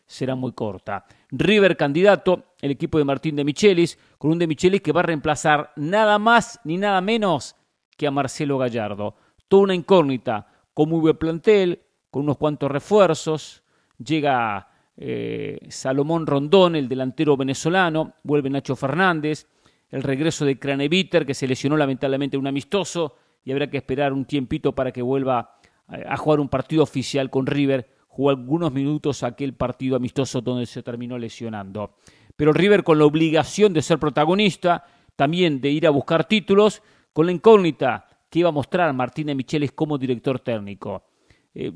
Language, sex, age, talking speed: English, male, 40-59, 160 wpm